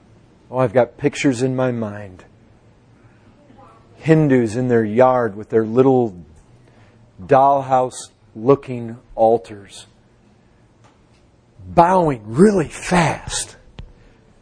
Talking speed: 85 wpm